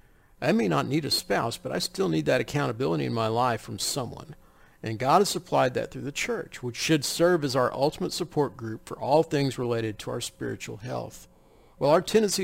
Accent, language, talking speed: American, English, 210 wpm